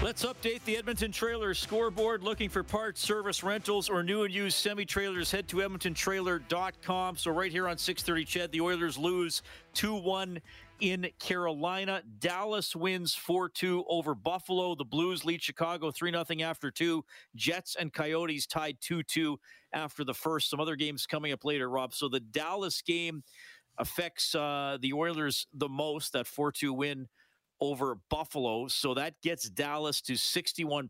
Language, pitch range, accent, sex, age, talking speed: English, 120-175 Hz, American, male, 40-59, 155 wpm